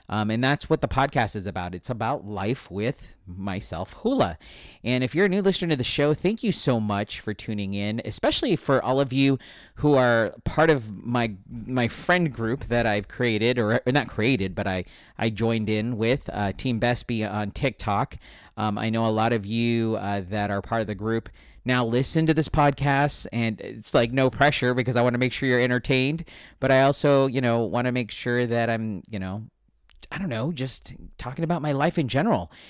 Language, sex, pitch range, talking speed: English, male, 105-130 Hz, 215 wpm